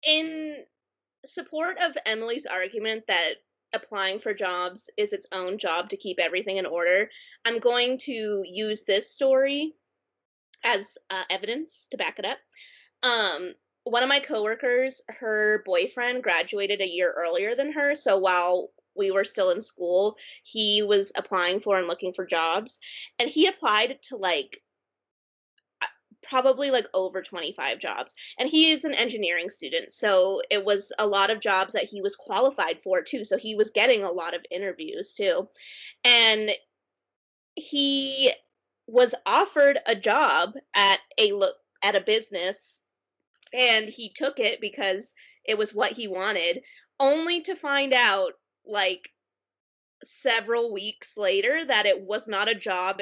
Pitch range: 195-290 Hz